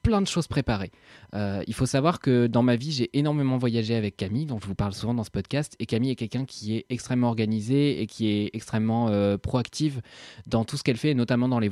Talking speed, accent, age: 240 wpm, French, 20-39